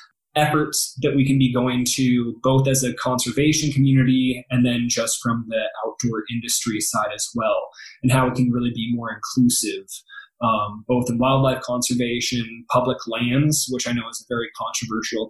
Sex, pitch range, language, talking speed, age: male, 120-135 Hz, English, 175 wpm, 20-39